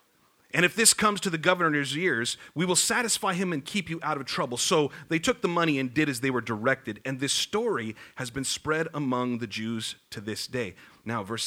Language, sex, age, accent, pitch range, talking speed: English, male, 40-59, American, 110-160 Hz, 225 wpm